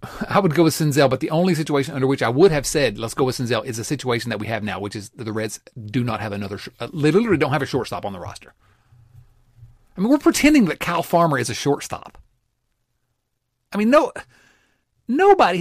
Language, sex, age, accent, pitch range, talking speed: English, male, 40-59, American, 115-175 Hz, 225 wpm